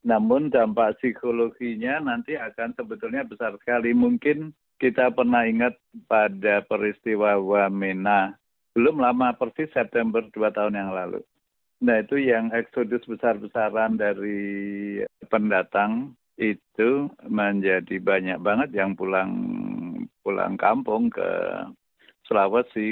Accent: native